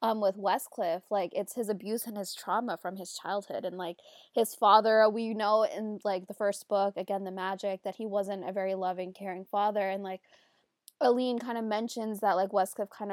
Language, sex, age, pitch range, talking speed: English, female, 20-39, 195-230 Hz, 205 wpm